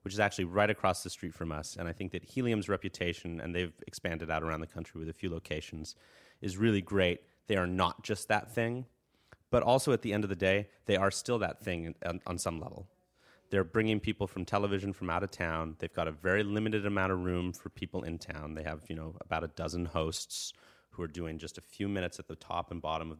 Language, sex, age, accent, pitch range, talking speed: English, male, 30-49, American, 85-100 Hz, 240 wpm